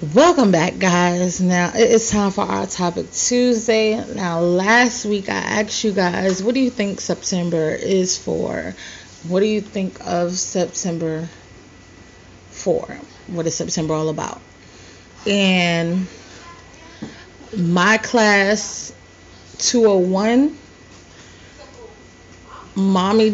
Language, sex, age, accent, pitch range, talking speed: English, female, 30-49, American, 170-215 Hz, 105 wpm